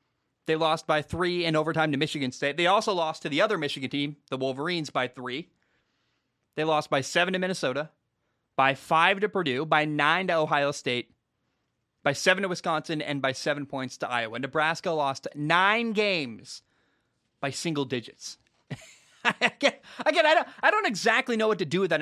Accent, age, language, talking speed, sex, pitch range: American, 20-39, English, 170 wpm, male, 130-170 Hz